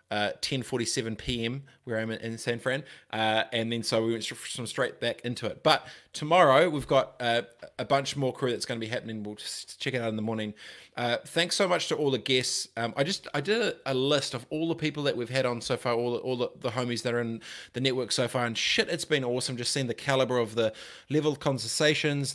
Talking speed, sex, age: 245 wpm, male, 20-39